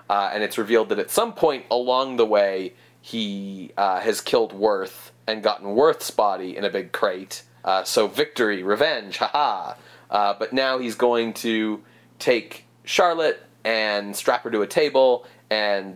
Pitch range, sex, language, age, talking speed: 100-125 Hz, male, English, 30-49, 165 wpm